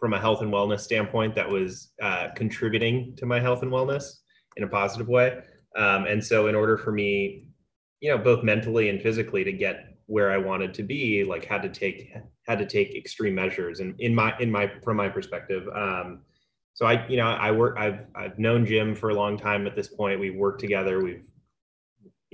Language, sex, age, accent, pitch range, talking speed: English, male, 30-49, American, 100-120 Hz, 210 wpm